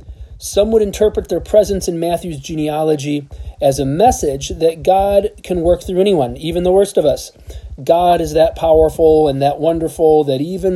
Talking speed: 175 wpm